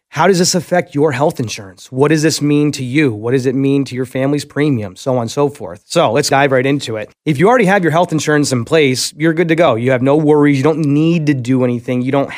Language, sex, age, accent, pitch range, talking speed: English, male, 30-49, American, 125-150 Hz, 275 wpm